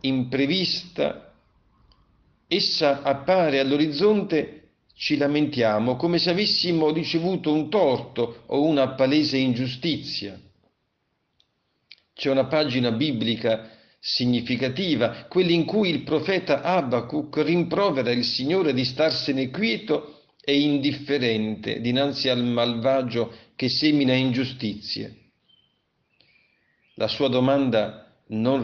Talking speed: 95 wpm